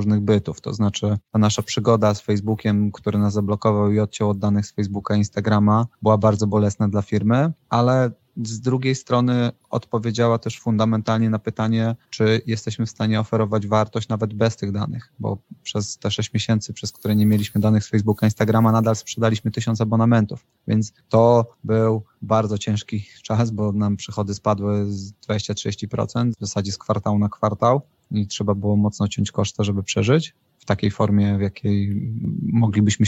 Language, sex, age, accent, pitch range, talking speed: Polish, male, 20-39, native, 105-115 Hz, 170 wpm